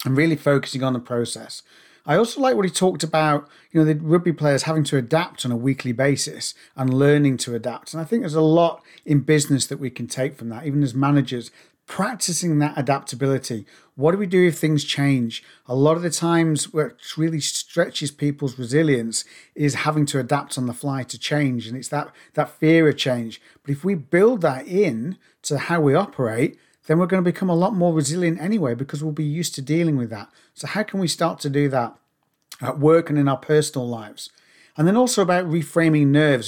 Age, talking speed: 40-59, 215 wpm